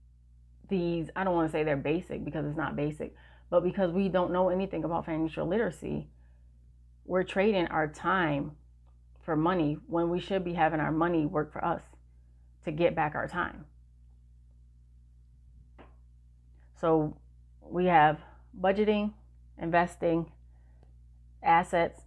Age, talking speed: 30-49, 130 wpm